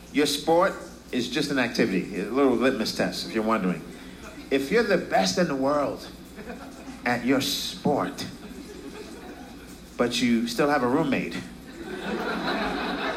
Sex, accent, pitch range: male, American, 135-195 Hz